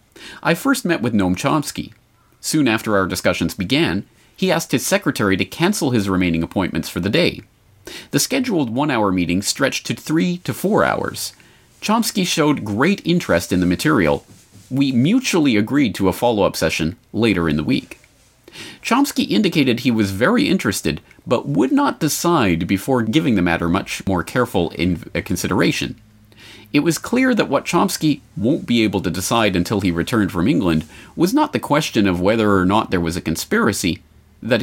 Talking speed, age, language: 170 wpm, 30-49, English